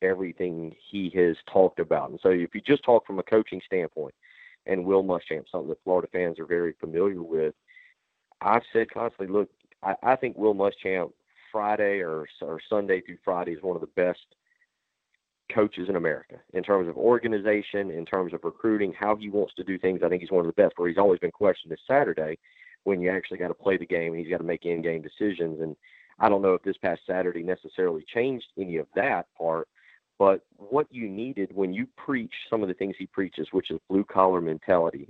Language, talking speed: English, 210 wpm